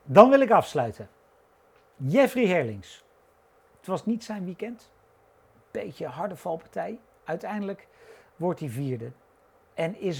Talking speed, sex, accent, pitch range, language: 120 wpm, male, Dutch, 155-205 Hz, Dutch